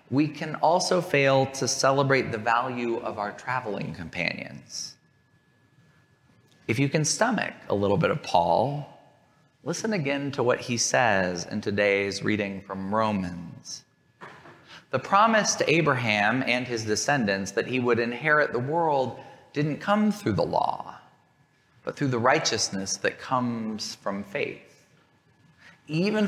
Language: English